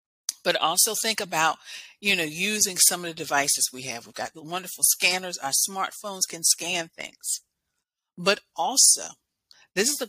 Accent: American